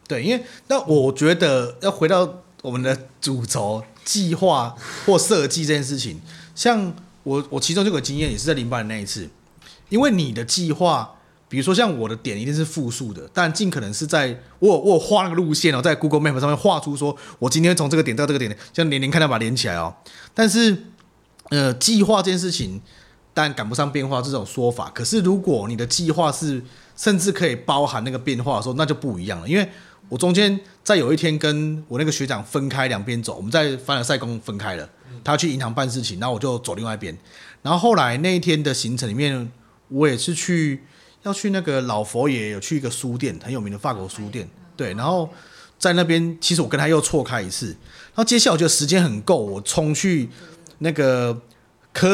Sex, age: male, 30-49